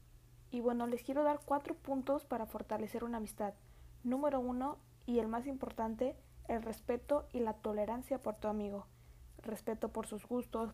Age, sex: 20-39, female